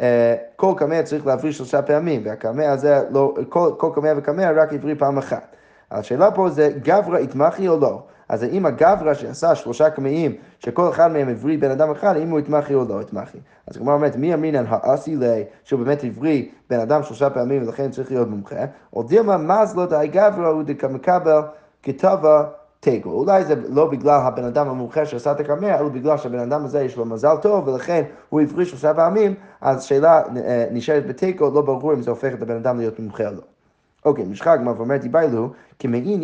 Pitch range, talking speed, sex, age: 120-155 Hz, 180 wpm, male, 20-39